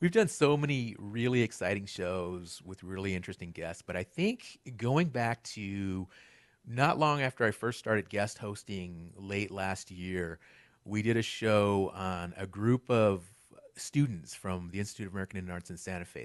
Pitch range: 95-135 Hz